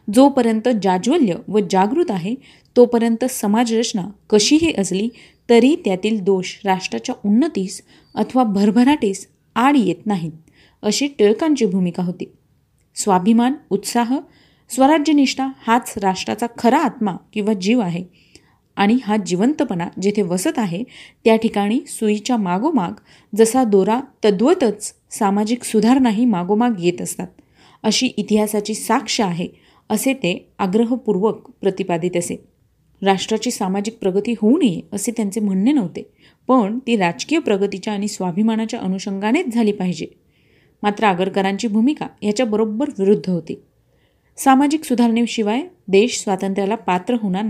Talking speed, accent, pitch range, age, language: 115 wpm, native, 195-240 Hz, 30-49, Marathi